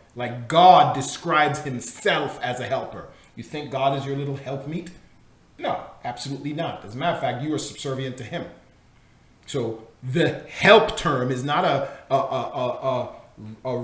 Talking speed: 165 wpm